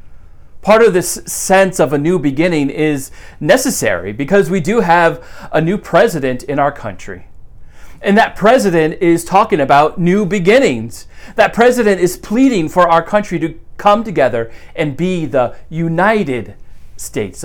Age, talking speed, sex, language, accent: 40-59, 150 wpm, male, English, American